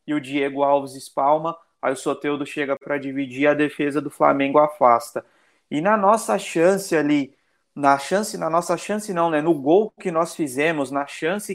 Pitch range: 145-175 Hz